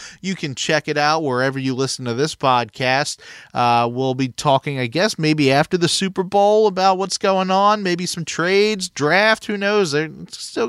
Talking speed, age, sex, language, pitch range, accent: 190 wpm, 30-49, male, English, 140-185 Hz, American